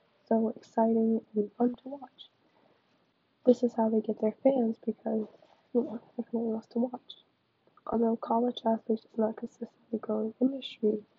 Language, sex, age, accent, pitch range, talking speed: English, female, 10-29, American, 215-235 Hz, 140 wpm